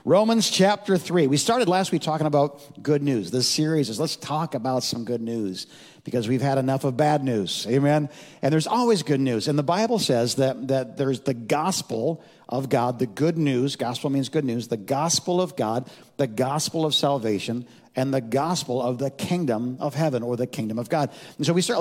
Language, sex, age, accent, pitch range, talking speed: English, male, 50-69, American, 130-170 Hz, 210 wpm